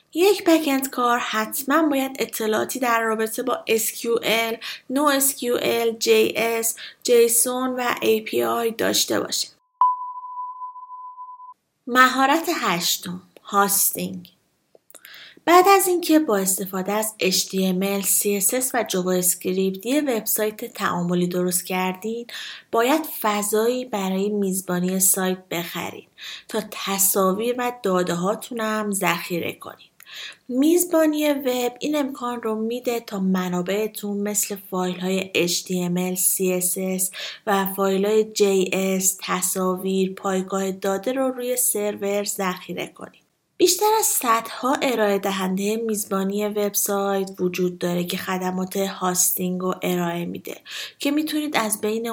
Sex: female